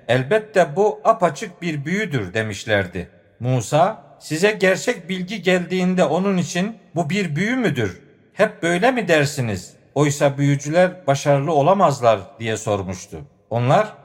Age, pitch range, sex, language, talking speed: 50-69, 140-185 Hz, male, Turkish, 120 wpm